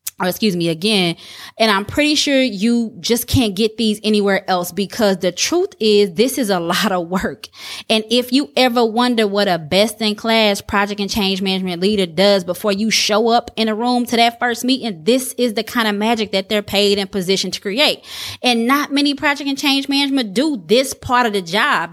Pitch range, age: 195-245 Hz, 20-39